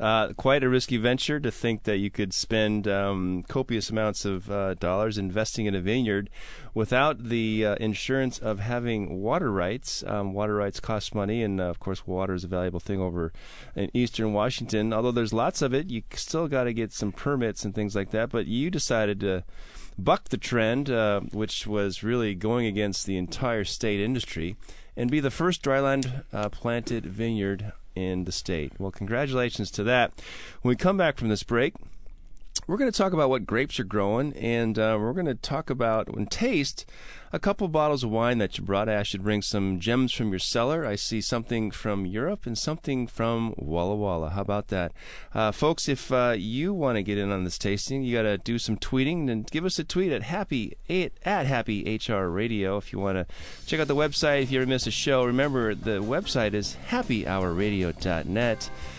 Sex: male